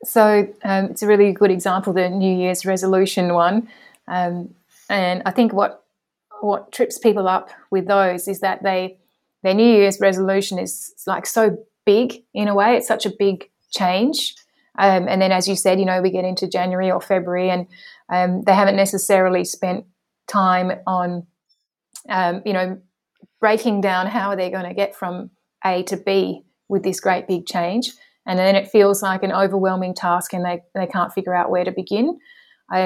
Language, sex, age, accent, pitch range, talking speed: English, female, 30-49, Australian, 180-205 Hz, 185 wpm